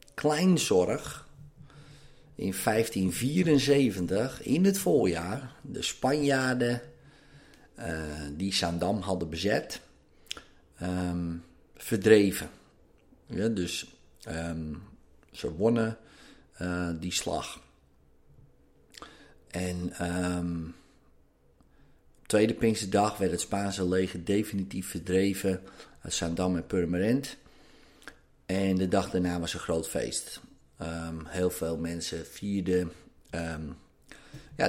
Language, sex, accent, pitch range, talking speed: Dutch, male, Dutch, 85-105 Hz, 95 wpm